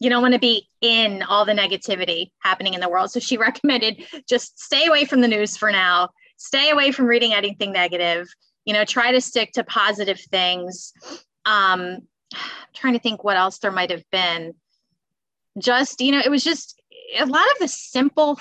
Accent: American